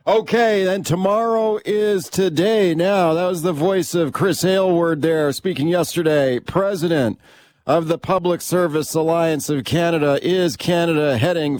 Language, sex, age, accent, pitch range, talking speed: English, male, 40-59, American, 150-180 Hz, 140 wpm